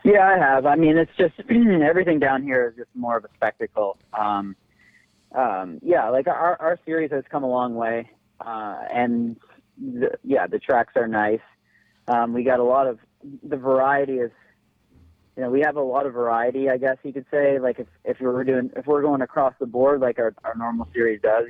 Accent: American